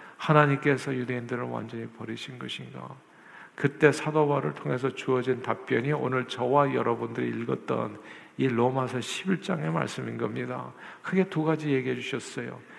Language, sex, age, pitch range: Korean, male, 50-69, 125-160 Hz